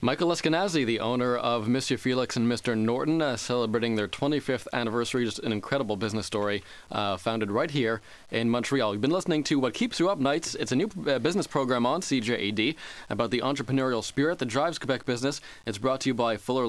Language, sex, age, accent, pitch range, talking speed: English, male, 20-39, American, 115-140 Hz, 200 wpm